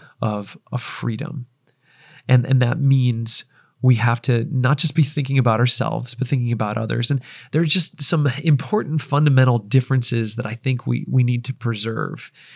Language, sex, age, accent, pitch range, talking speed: English, male, 30-49, American, 120-140 Hz, 170 wpm